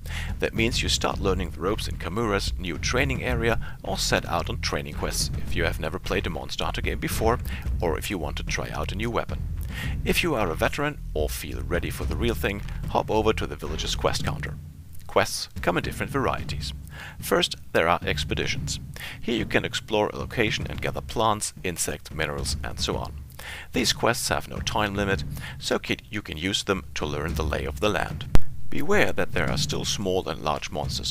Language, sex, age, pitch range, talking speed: English, male, 40-59, 75-95 Hz, 205 wpm